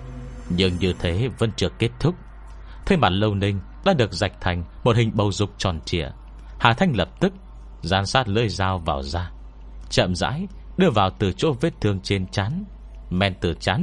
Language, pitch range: Vietnamese, 75-110 Hz